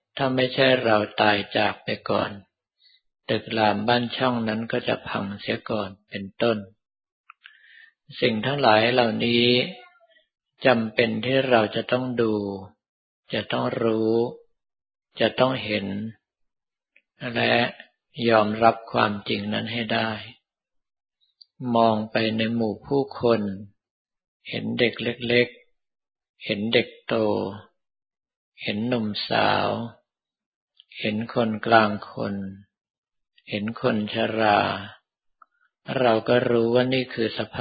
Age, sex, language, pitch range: 60-79, male, Thai, 105-125 Hz